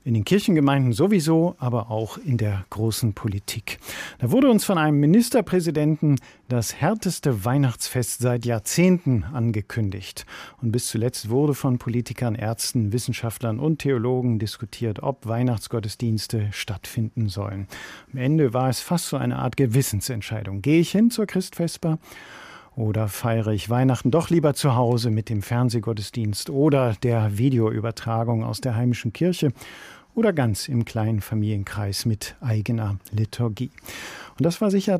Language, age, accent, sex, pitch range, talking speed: German, 50-69, German, male, 110-140 Hz, 140 wpm